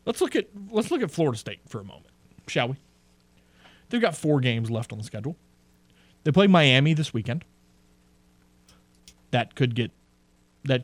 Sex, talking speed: male, 165 wpm